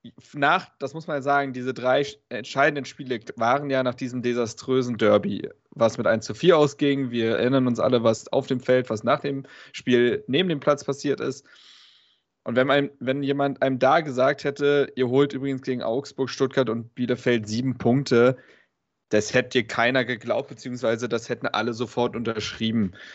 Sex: male